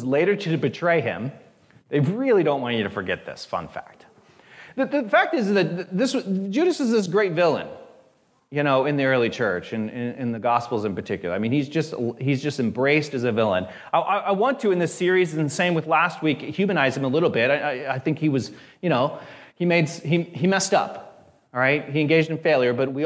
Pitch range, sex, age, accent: 140-200 Hz, male, 30-49, American